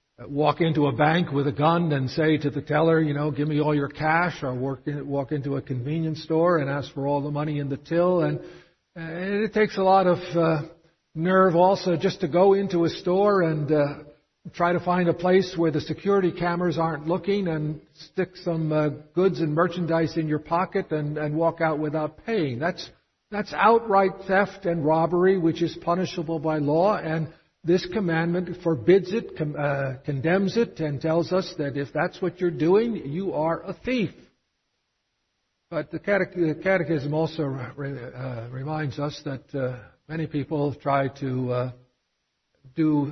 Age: 60-79